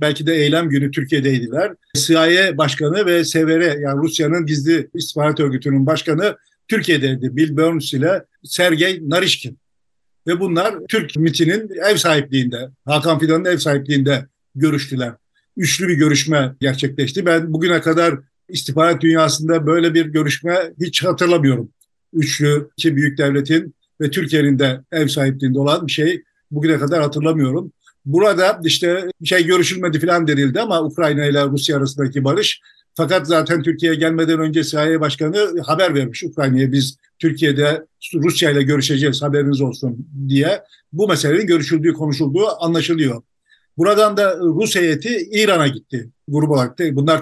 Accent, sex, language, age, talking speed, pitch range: native, male, Turkish, 50-69, 135 wpm, 140-170 Hz